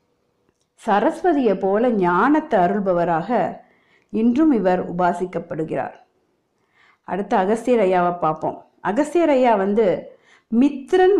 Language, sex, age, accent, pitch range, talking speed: Tamil, female, 50-69, native, 195-275 Hz, 70 wpm